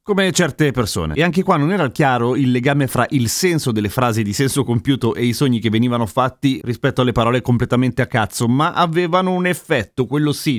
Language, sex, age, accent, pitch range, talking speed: Italian, male, 30-49, native, 115-155 Hz, 210 wpm